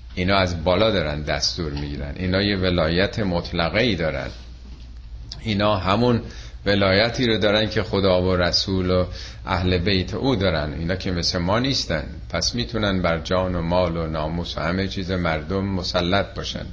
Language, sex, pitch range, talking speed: Persian, male, 80-110 Hz, 160 wpm